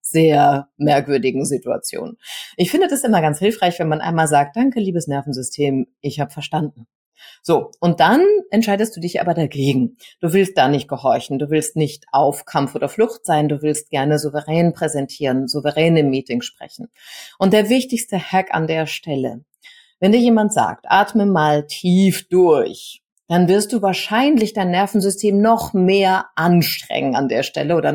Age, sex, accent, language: 30-49, female, German, German